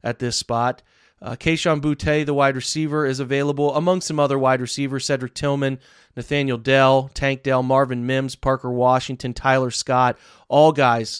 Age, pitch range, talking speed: 30-49, 125-150 Hz, 160 wpm